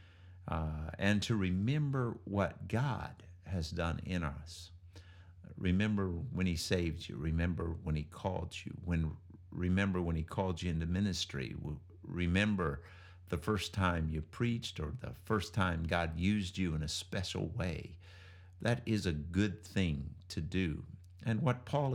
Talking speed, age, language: 150 wpm, 50-69, English